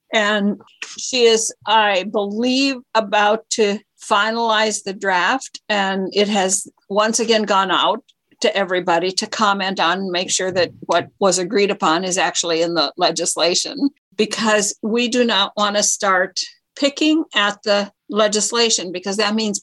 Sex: female